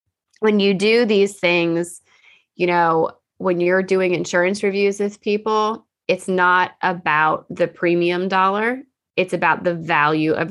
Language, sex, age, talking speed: English, female, 20-39, 145 wpm